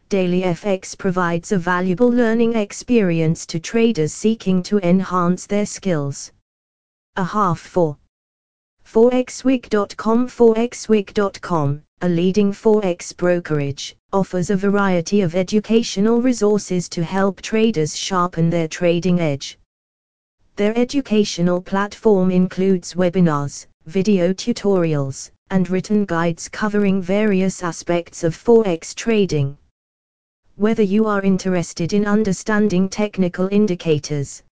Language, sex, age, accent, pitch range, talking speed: English, female, 20-39, British, 170-210 Hz, 105 wpm